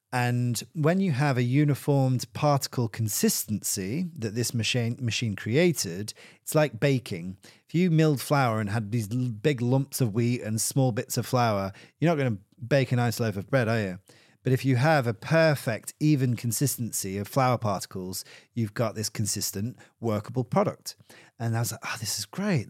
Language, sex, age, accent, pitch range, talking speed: English, male, 30-49, British, 110-135 Hz, 185 wpm